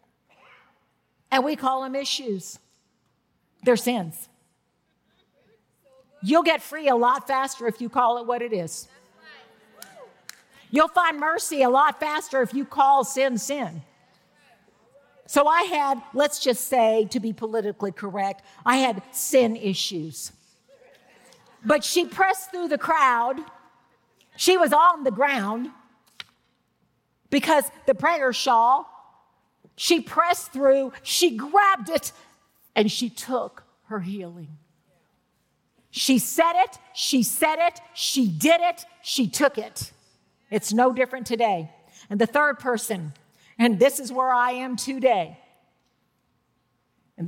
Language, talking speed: English, 125 wpm